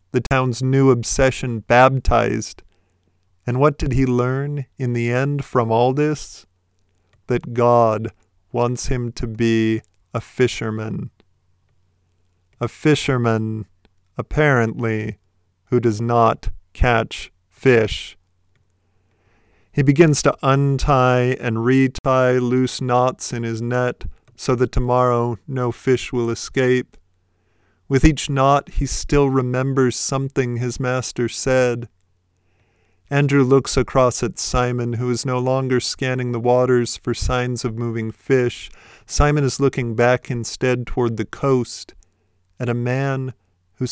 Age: 40-59